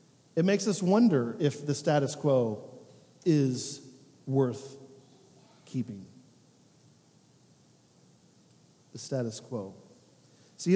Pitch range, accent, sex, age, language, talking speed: 140-180 Hz, American, male, 40-59, English, 85 wpm